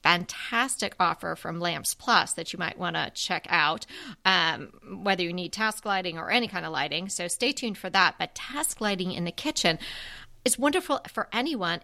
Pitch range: 175-230 Hz